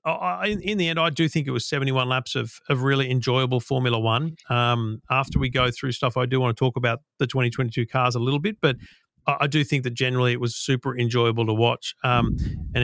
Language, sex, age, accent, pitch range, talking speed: English, male, 40-59, Australian, 125-155 Hz, 235 wpm